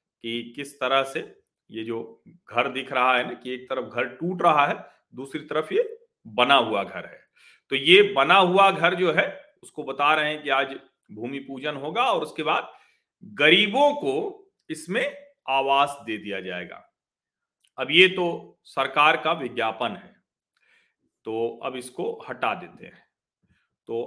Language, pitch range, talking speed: Hindi, 125-180 Hz, 160 wpm